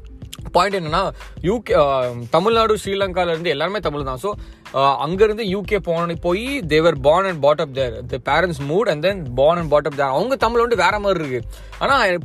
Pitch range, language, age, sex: 135-190 Hz, Tamil, 20-39, male